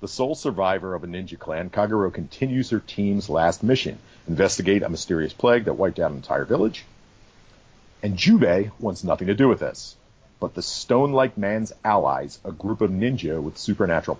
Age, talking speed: 50-69, 180 wpm